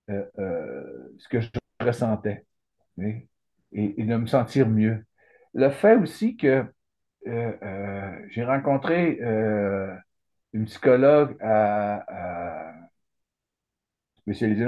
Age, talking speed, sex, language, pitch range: 50-69, 100 wpm, male, English, 110-135 Hz